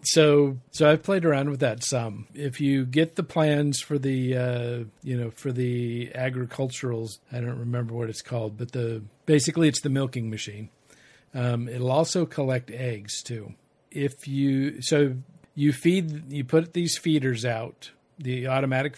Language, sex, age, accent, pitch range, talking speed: English, male, 50-69, American, 120-145 Hz, 165 wpm